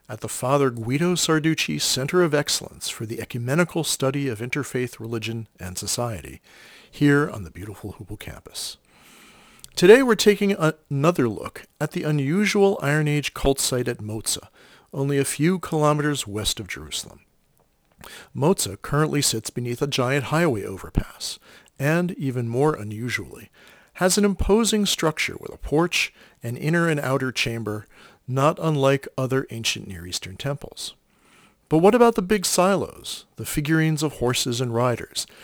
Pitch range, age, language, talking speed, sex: 115-155 Hz, 40-59, English, 145 wpm, male